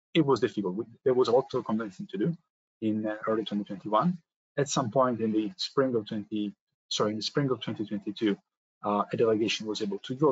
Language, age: English, 20-39